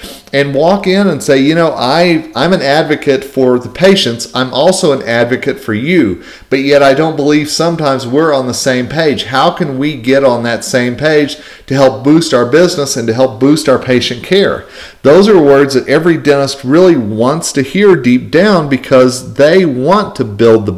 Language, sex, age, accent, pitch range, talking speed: English, male, 40-59, American, 120-155 Hz, 195 wpm